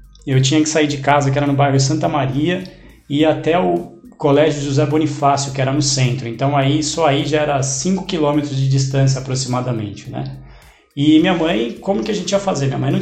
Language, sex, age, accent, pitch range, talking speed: Portuguese, male, 20-39, Brazilian, 135-155 Hz, 210 wpm